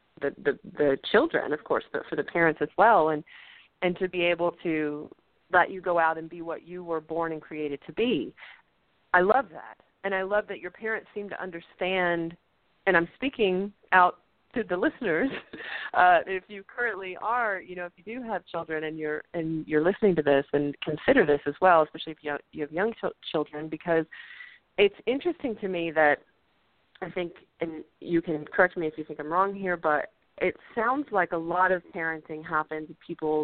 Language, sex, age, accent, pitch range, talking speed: English, female, 40-59, American, 155-190 Hz, 205 wpm